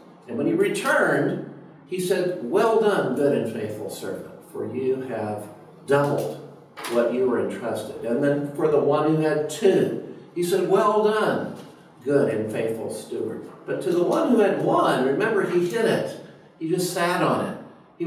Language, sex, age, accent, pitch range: Chinese, male, 50-69, American, 125-185 Hz